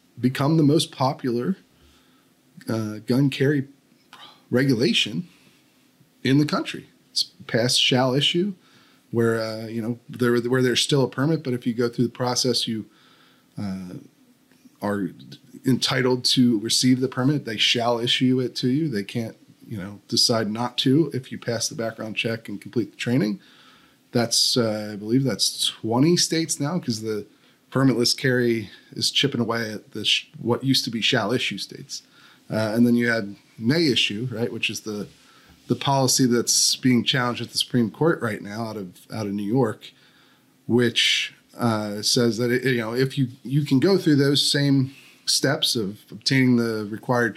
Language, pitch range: English, 115-135 Hz